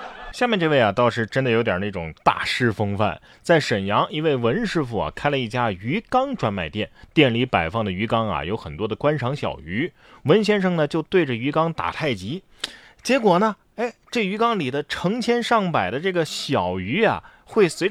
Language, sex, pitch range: Chinese, male, 115-180 Hz